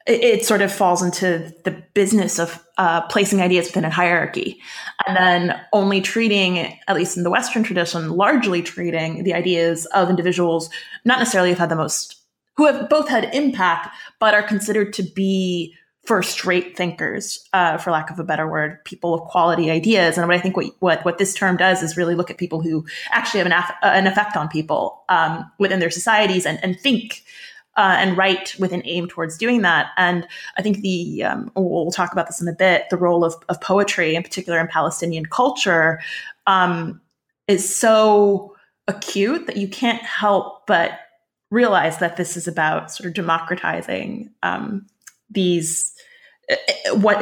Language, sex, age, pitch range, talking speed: English, female, 20-39, 170-205 Hz, 180 wpm